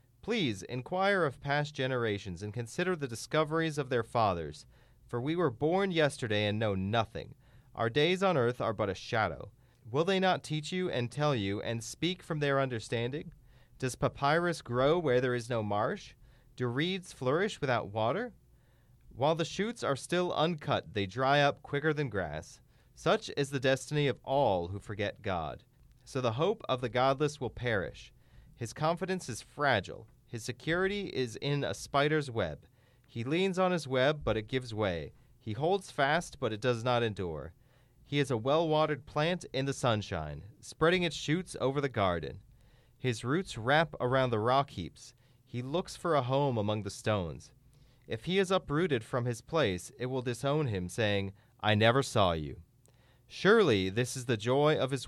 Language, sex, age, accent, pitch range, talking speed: English, male, 30-49, American, 115-150 Hz, 180 wpm